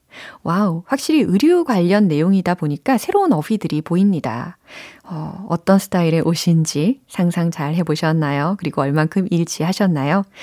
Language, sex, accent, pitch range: Korean, female, native, 165-255 Hz